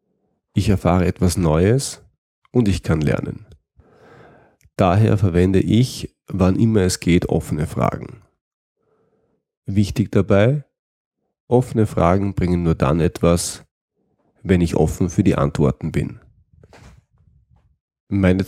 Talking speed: 105 wpm